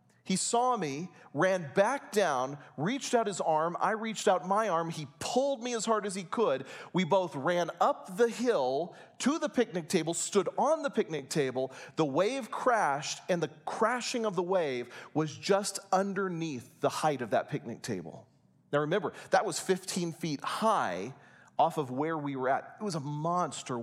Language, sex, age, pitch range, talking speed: English, male, 40-59, 155-215 Hz, 185 wpm